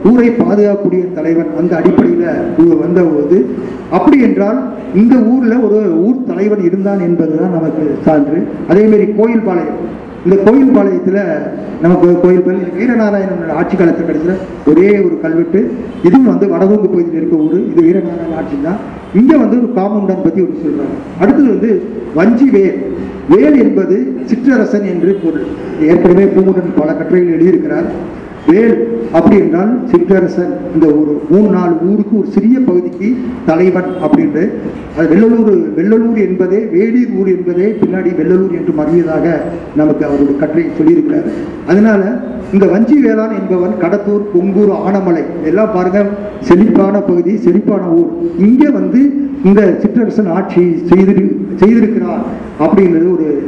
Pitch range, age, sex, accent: 175-220 Hz, 50-69, male, native